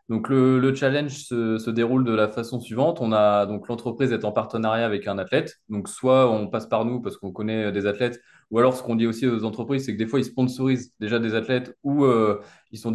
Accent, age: French, 20-39